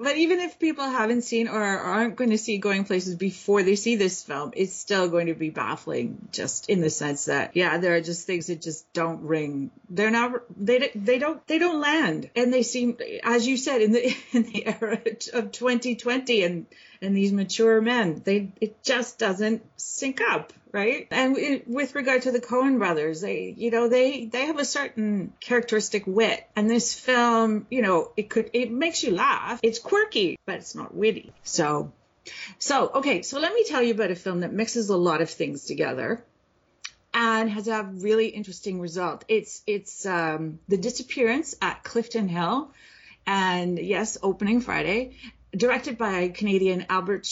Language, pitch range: English, 180-245 Hz